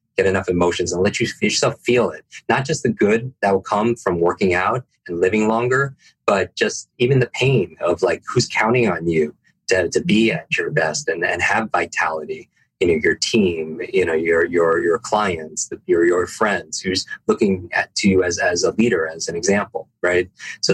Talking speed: 200 wpm